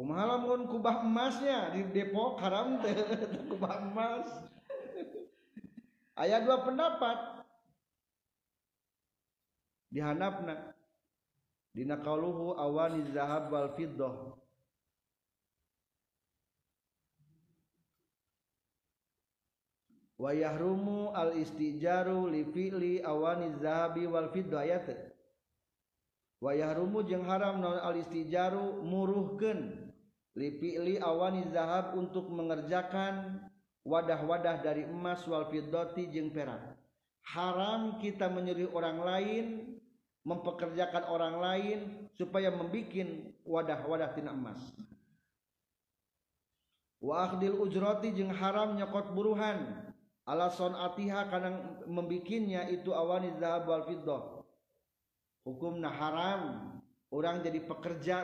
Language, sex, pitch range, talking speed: Indonesian, male, 155-195 Hz, 75 wpm